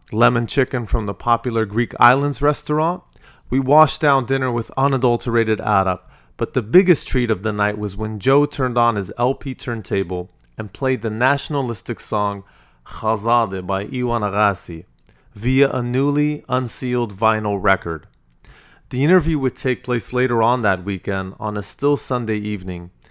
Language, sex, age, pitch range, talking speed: English, male, 30-49, 105-130 Hz, 155 wpm